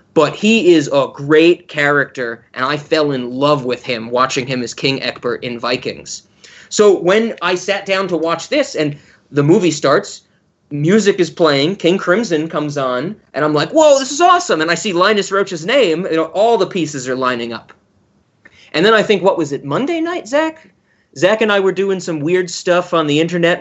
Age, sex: 30-49, male